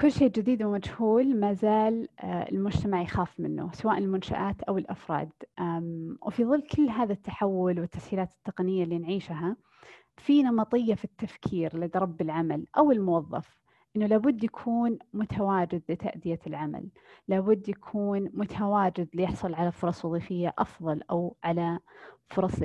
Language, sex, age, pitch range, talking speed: Arabic, female, 20-39, 175-225 Hz, 125 wpm